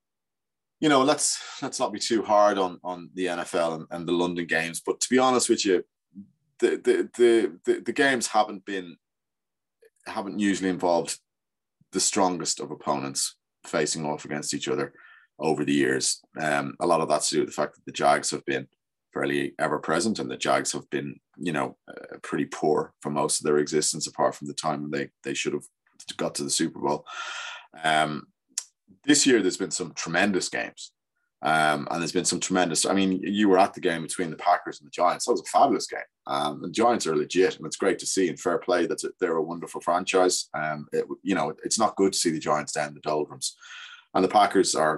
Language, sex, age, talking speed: English, male, 20-39, 215 wpm